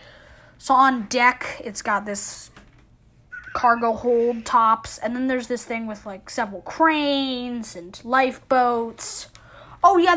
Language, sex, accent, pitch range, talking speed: English, female, American, 220-270 Hz, 130 wpm